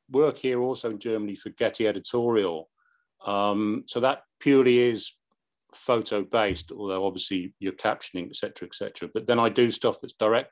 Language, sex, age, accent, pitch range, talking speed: English, male, 40-59, British, 100-120 Hz, 165 wpm